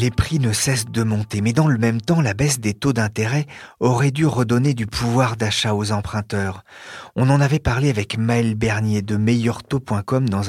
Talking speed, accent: 195 wpm, French